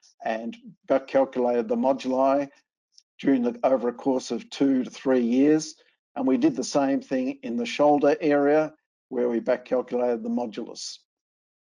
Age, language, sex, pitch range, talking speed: 50-69, English, male, 120-140 Hz, 160 wpm